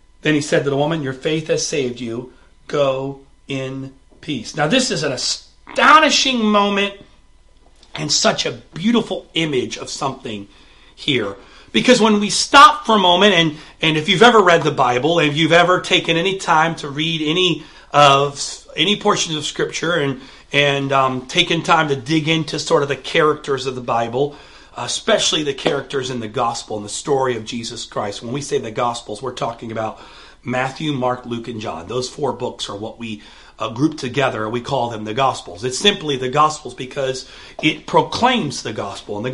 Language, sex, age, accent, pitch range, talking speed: English, male, 40-59, American, 125-165 Hz, 190 wpm